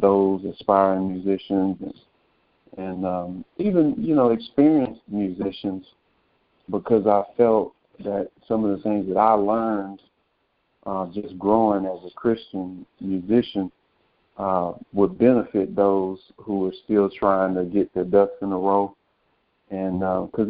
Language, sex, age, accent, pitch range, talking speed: English, male, 50-69, American, 95-110 Hz, 130 wpm